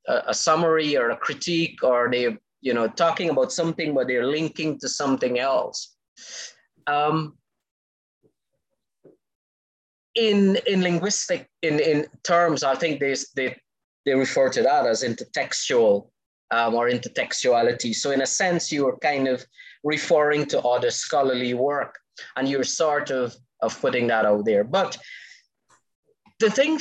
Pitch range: 125-180 Hz